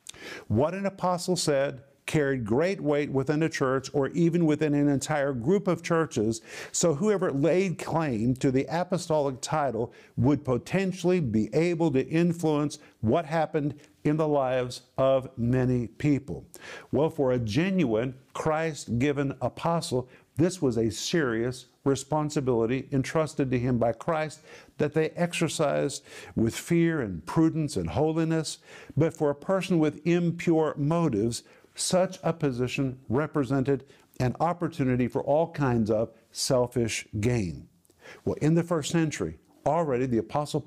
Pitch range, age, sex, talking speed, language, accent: 130-160 Hz, 50-69, male, 135 wpm, English, American